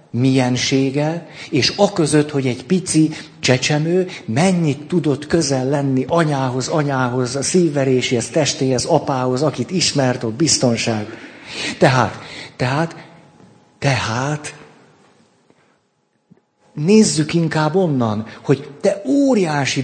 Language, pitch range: Hungarian, 130-175 Hz